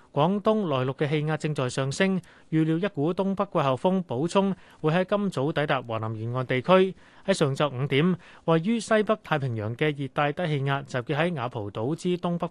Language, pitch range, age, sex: Chinese, 135-180 Hz, 30-49, male